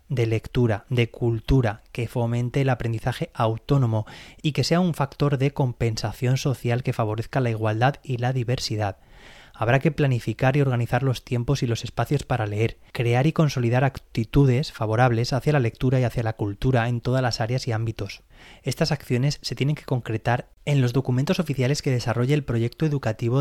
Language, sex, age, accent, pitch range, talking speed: Spanish, male, 20-39, Spanish, 115-140 Hz, 175 wpm